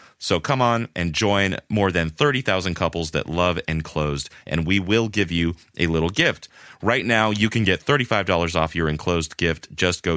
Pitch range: 80-105 Hz